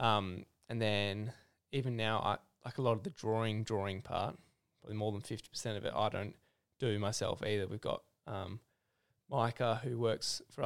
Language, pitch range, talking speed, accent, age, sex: English, 105-120 Hz, 185 wpm, Australian, 10-29, male